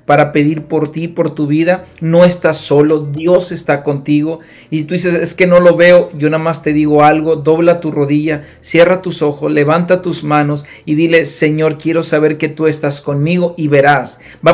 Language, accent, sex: Spanish, Mexican, male